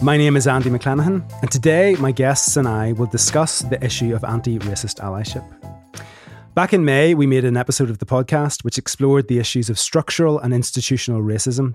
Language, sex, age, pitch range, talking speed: English, male, 30-49, 120-140 Hz, 190 wpm